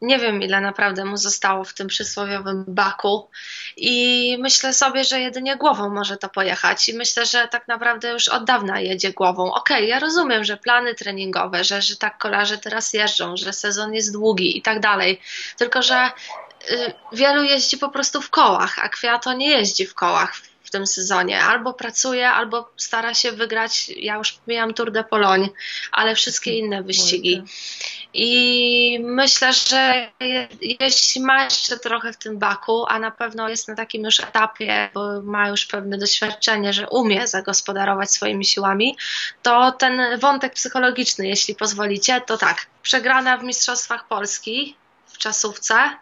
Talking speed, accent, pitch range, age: 160 wpm, native, 205-255 Hz, 20-39